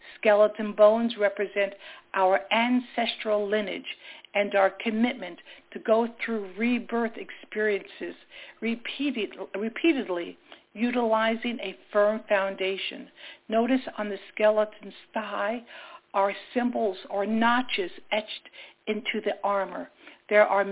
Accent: American